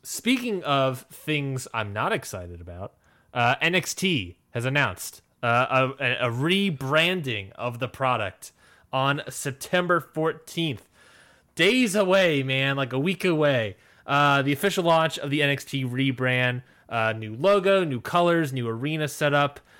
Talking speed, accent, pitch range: 130 wpm, American, 115-150 Hz